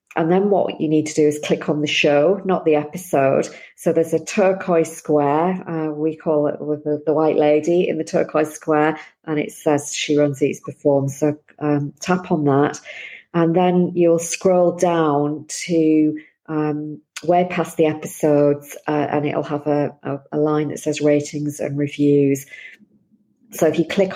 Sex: female